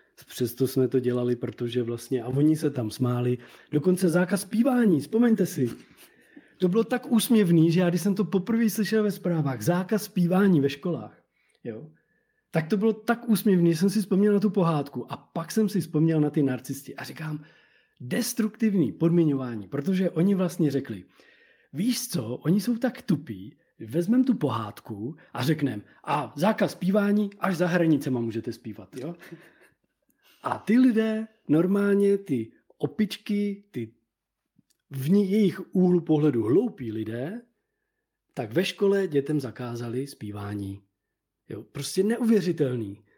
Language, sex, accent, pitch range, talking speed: Czech, male, native, 125-200 Hz, 145 wpm